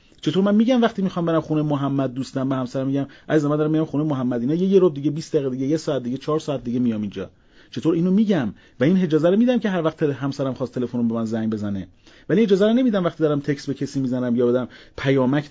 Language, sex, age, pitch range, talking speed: Persian, male, 30-49, 125-170 Hz, 260 wpm